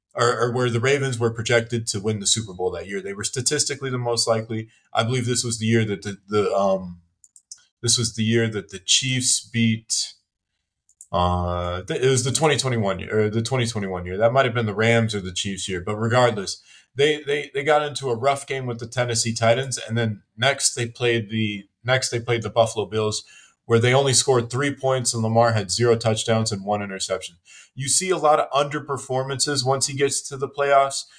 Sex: male